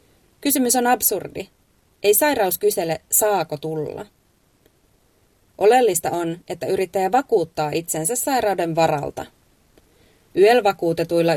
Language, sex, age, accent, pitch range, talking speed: Finnish, female, 30-49, native, 160-215 Hz, 90 wpm